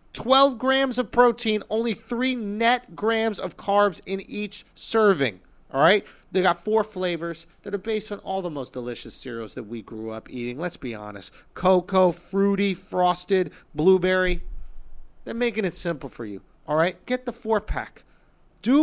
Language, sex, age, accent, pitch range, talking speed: English, male, 40-59, American, 175-240 Hz, 165 wpm